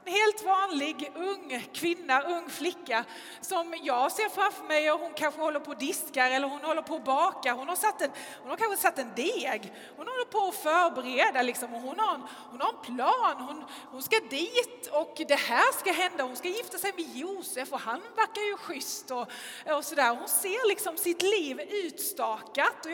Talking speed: 200 wpm